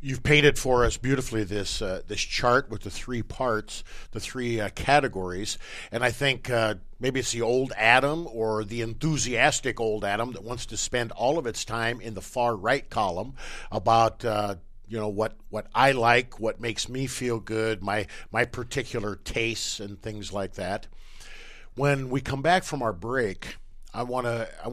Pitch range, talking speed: 105-130 Hz, 175 wpm